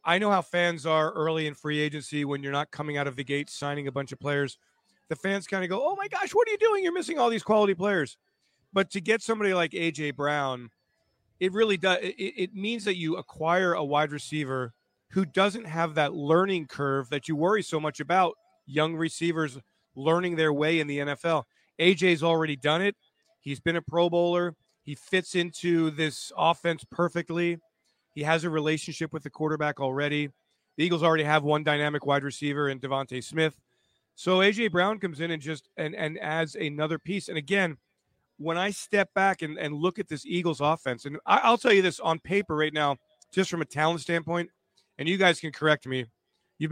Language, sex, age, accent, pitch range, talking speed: English, male, 40-59, American, 145-180 Hz, 205 wpm